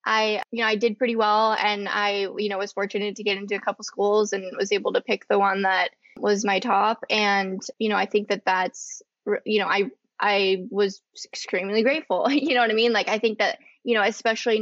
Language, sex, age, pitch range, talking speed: English, female, 20-39, 205-245 Hz, 230 wpm